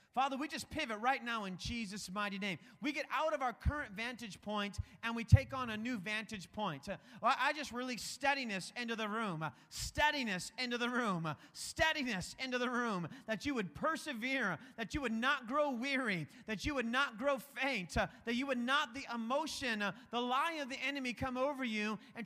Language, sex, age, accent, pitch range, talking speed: English, male, 30-49, American, 215-265 Hz, 195 wpm